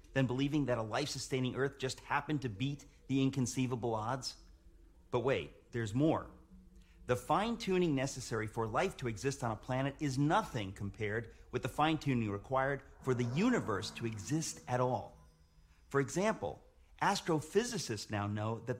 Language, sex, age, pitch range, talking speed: English, male, 40-59, 115-150 Hz, 150 wpm